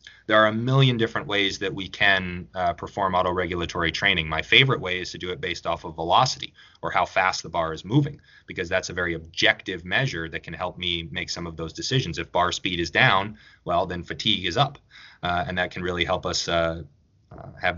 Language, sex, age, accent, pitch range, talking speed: English, male, 20-39, American, 90-130 Hz, 225 wpm